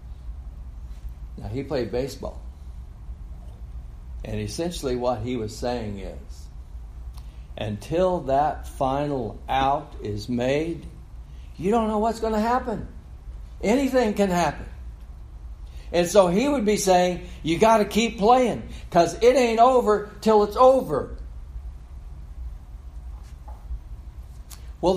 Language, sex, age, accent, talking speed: English, male, 60-79, American, 110 wpm